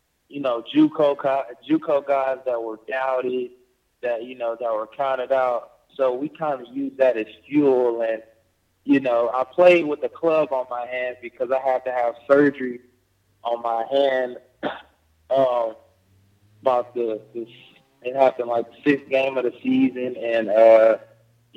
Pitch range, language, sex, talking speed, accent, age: 115-135 Hz, English, male, 155 wpm, American, 20-39